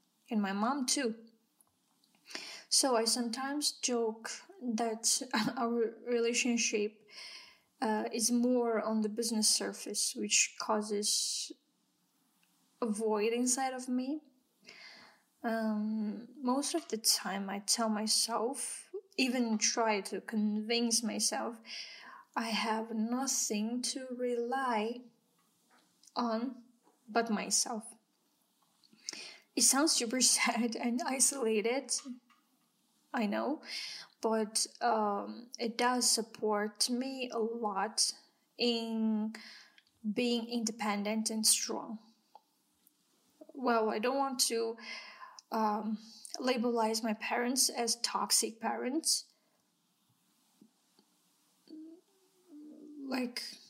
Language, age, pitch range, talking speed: English, 10-29, 220-255 Hz, 90 wpm